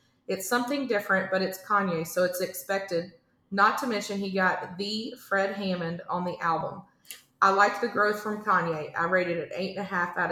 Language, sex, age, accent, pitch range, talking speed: English, female, 30-49, American, 170-205 Hz, 180 wpm